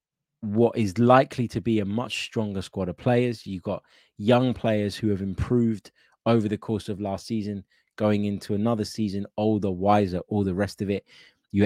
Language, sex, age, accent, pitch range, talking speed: English, male, 20-39, British, 95-115 Hz, 185 wpm